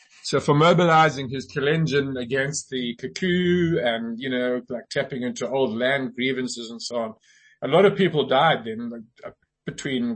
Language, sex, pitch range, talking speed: English, male, 120-160 Hz, 170 wpm